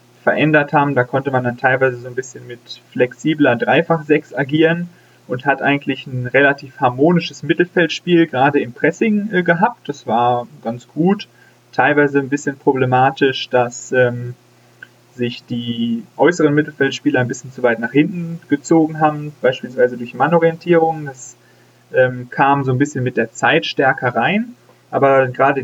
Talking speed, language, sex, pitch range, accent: 150 wpm, German, male, 125-160 Hz, German